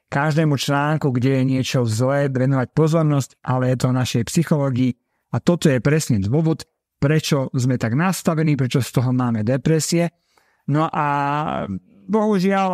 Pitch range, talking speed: 130-165 Hz, 145 wpm